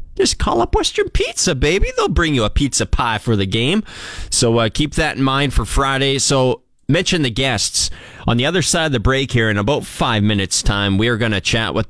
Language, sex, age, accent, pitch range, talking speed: English, male, 30-49, American, 95-135 Hz, 230 wpm